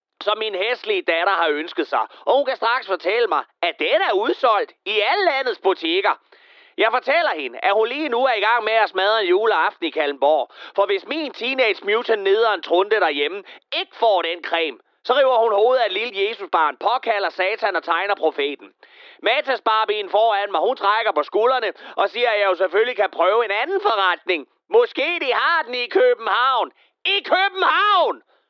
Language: Danish